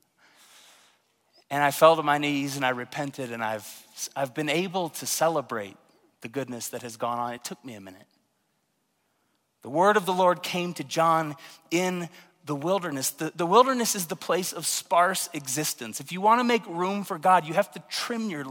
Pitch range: 145-210 Hz